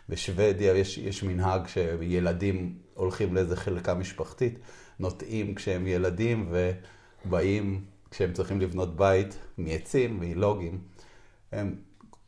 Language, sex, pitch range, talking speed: Hebrew, male, 90-100 Hz, 100 wpm